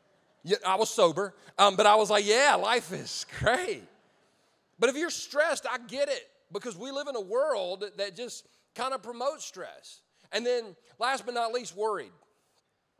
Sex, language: male, English